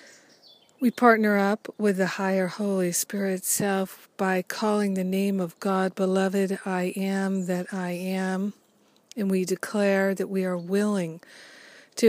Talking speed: 145 wpm